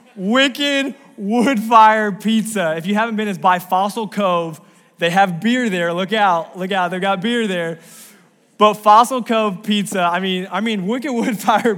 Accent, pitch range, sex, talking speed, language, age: American, 180-230 Hz, male, 170 wpm, English, 20-39